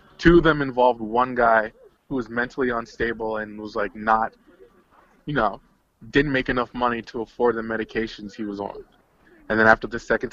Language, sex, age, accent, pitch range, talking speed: English, male, 20-39, American, 110-120 Hz, 185 wpm